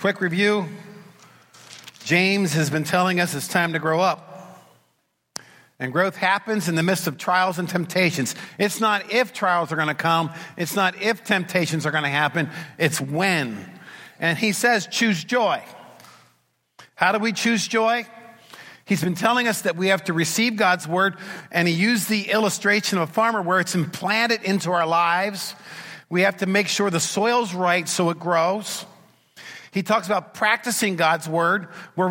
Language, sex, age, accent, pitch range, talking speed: English, male, 50-69, American, 165-205 Hz, 175 wpm